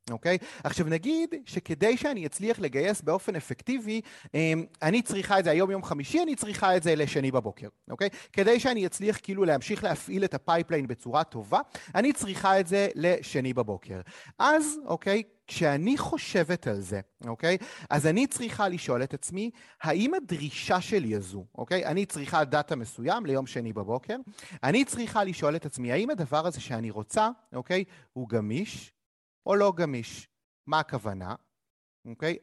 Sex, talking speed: male, 165 wpm